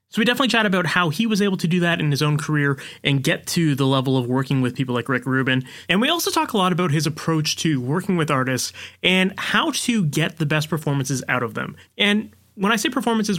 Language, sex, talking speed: English, male, 250 wpm